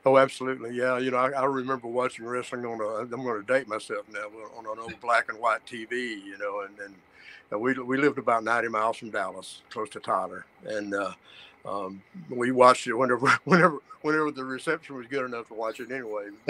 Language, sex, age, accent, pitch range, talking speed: English, male, 60-79, American, 105-130 Hz, 210 wpm